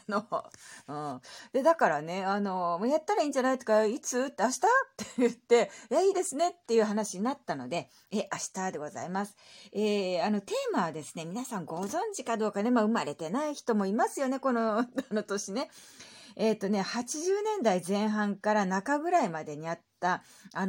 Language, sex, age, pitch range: Japanese, female, 40-59, 170-250 Hz